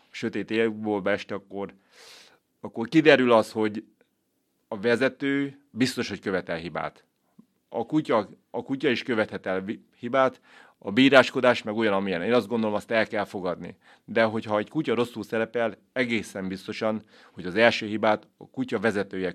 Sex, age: male, 30-49